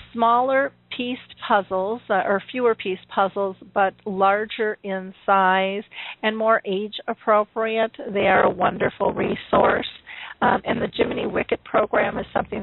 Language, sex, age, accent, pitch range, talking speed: English, female, 50-69, American, 195-220 Hz, 135 wpm